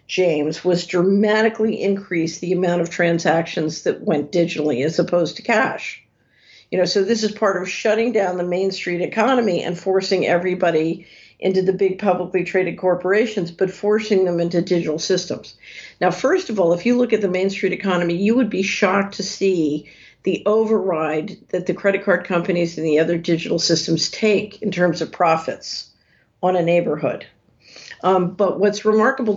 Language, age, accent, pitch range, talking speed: English, 50-69, American, 175-210 Hz, 175 wpm